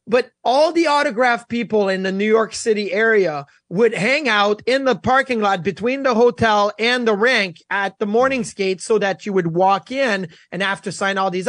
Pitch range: 200-255 Hz